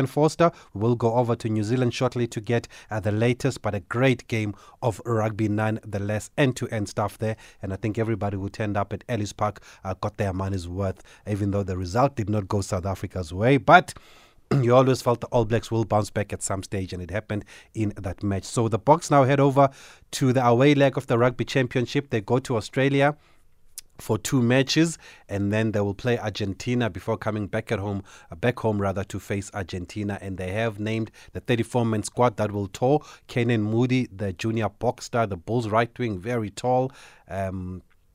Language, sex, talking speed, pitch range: English, male, 210 wpm, 100-125 Hz